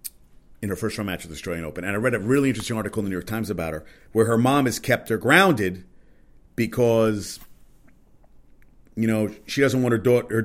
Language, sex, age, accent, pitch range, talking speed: English, male, 40-59, American, 105-120 Hz, 220 wpm